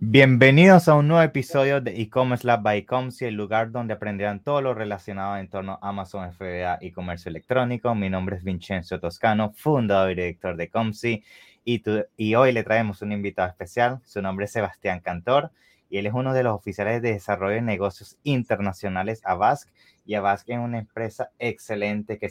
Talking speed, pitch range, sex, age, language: 190 wpm, 95-115 Hz, male, 20-39, English